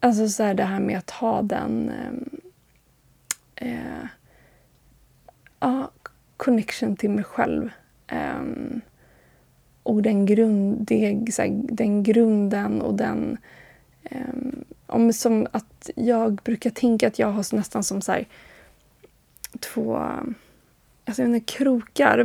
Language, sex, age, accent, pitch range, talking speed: Swedish, female, 20-39, native, 205-235 Hz, 120 wpm